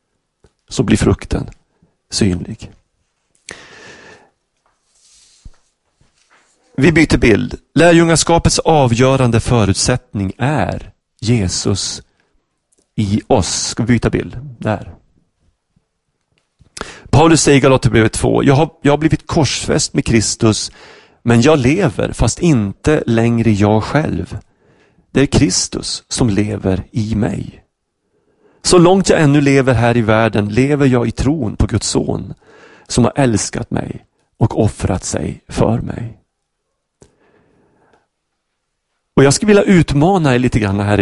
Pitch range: 110-150 Hz